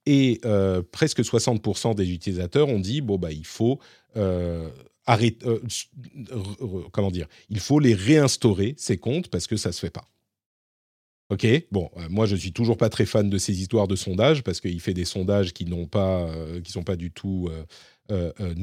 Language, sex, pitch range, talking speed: French, male, 95-140 Hz, 195 wpm